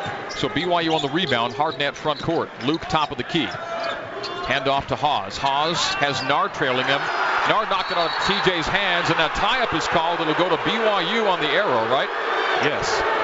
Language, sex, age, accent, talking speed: English, male, 50-69, American, 195 wpm